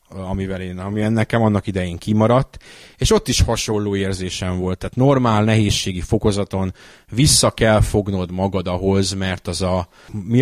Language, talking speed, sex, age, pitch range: Hungarian, 150 wpm, male, 30-49, 100-120 Hz